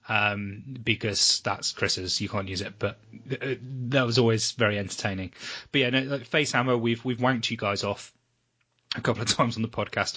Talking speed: 185 wpm